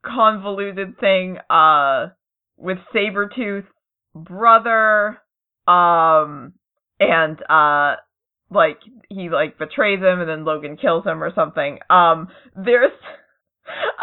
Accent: American